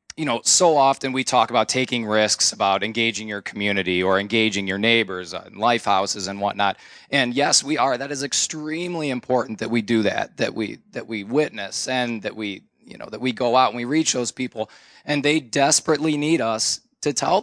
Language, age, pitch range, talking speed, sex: English, 20-39, 105-130 Hz, 210 wpm, male